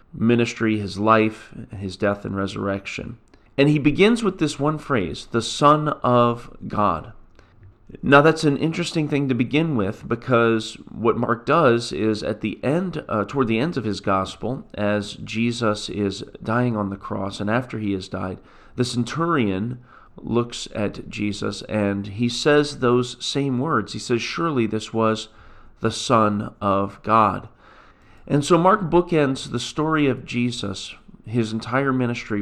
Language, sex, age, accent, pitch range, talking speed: English, male, 40-59, American, 105-145 Hz, 155 wpm